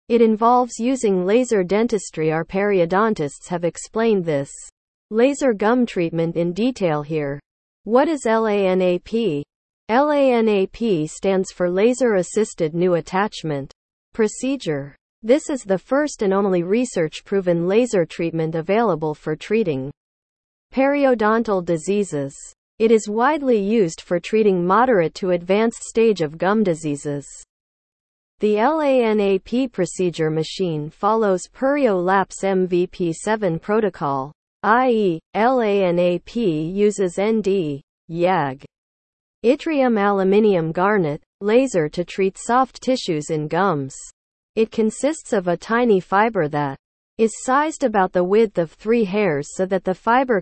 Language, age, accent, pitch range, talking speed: English, 40-59, American, 170-225 Hz, 115 wpm